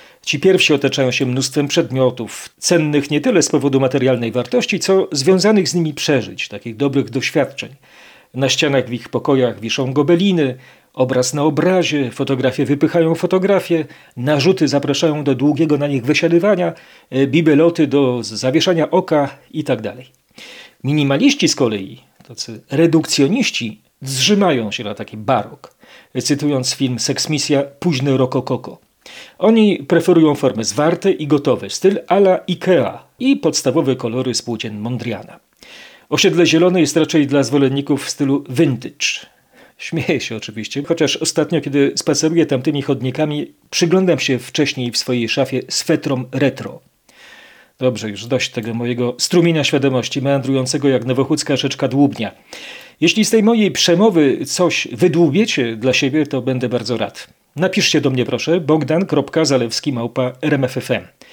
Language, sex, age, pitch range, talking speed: Polish, male, 40-59, 130-160 Hz, 130 wpm